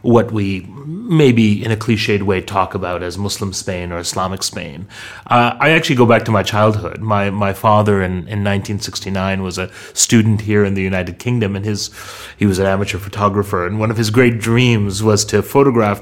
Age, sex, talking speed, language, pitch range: 30-49, male, 200 wpm, English, 105-120 Hz